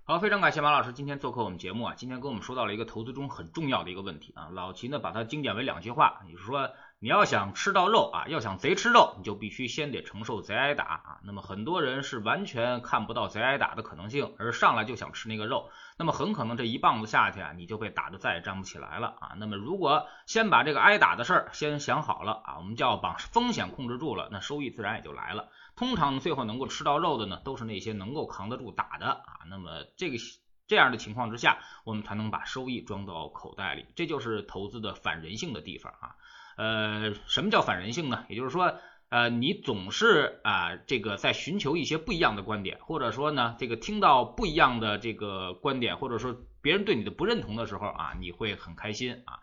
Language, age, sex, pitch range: Chinese, 20-39, male, 100-135 Hz